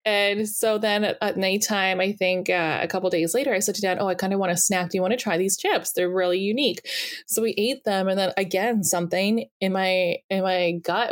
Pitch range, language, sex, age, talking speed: 175-210 Hz, English, female, 20-39, 255 wpm